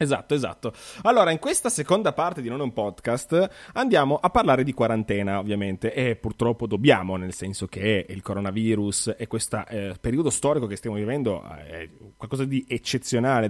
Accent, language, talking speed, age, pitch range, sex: native, Italian, 165 wpm, 30-49, 100-125 Hz, male